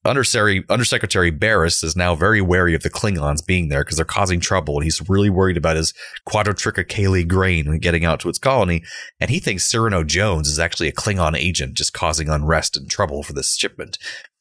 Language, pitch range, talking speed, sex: English, 80-100 Hz, 200 wpm, male